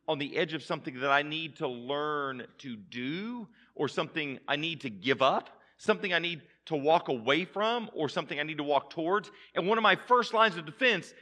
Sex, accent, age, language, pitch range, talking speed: male, American, 40-59, English, 135-195 Hz, 220 wpm